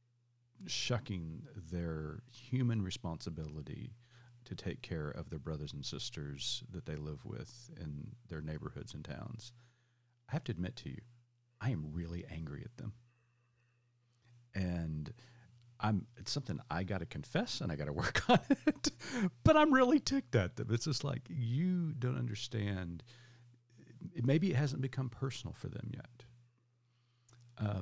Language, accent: English, American